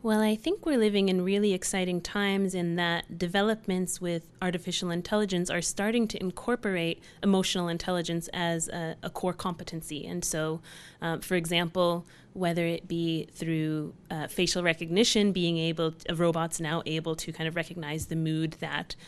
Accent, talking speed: American, 165 wpm